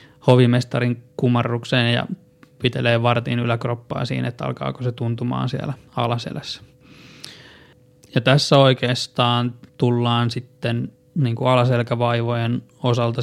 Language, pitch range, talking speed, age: Finnish, 120-130 Hz, 85 wpm, 20-39